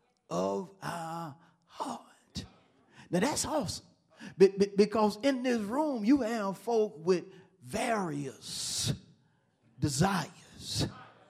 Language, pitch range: English, 160-220 Hz